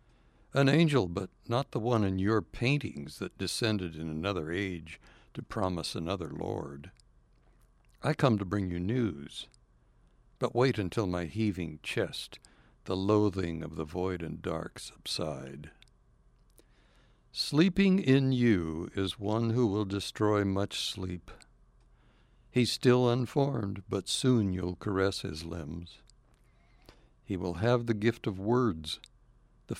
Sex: male